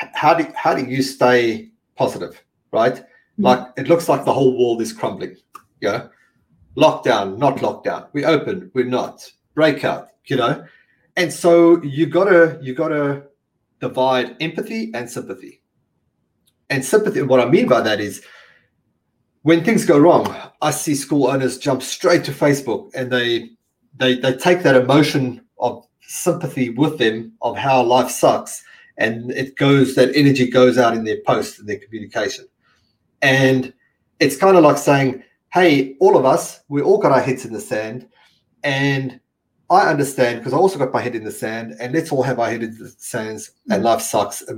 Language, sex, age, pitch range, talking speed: English, male, 30-49, 125-155 Hz, 175 wpm